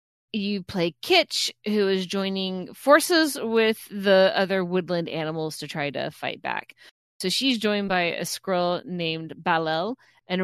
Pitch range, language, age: 180-220 Hz, English, 20-39